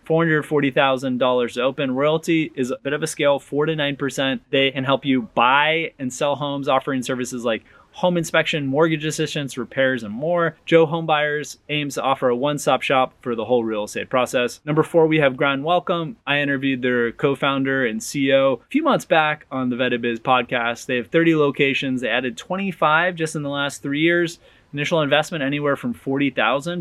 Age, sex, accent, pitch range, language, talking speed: 20-39, male, American, 125-145 Hz, English, 190 wpm